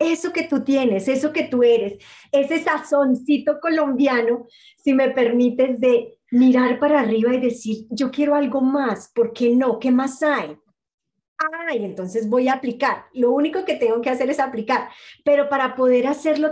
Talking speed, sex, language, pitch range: 175 wpm, female, Spanish, 230-285 Hz